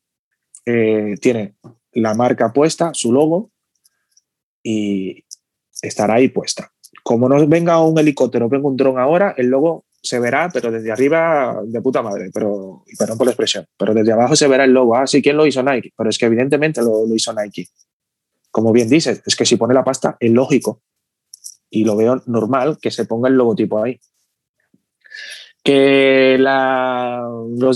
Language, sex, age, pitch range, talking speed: Spanish, male, 20-39, 115-145 Hz, 175 wpm